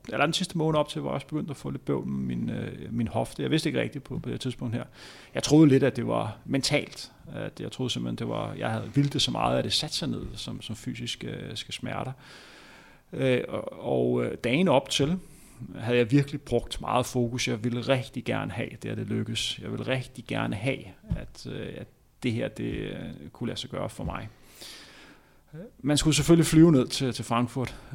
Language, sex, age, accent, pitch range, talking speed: Danish, male, 30-49, native, 115-140 Hz, 215 wpm